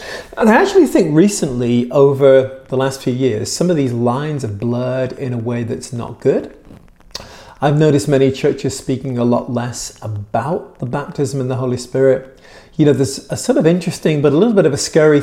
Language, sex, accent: English, male, British